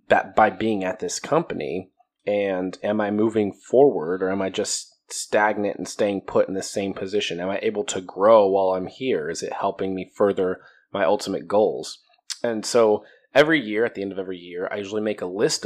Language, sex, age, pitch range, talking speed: English, male, 20-39, 95-155 Hz, 205 wpm